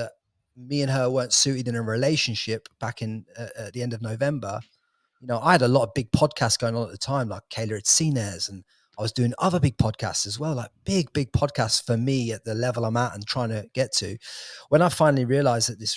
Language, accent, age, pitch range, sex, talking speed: English, British, 30-49, 110-135 Hz, male, 245 wpm